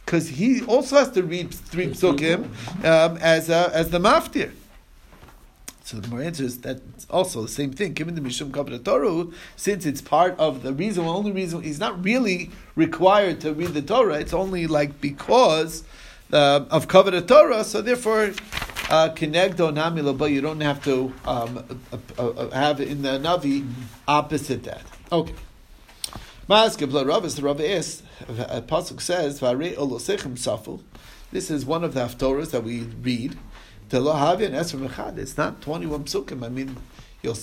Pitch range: 130-175 Hz